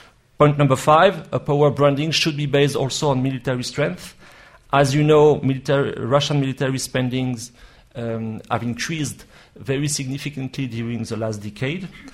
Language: English